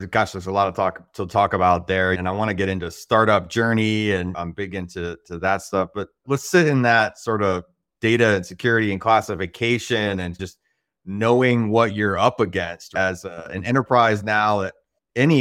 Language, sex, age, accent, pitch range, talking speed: English, male, 30-49, American, 90-110 Hz, 200 wpm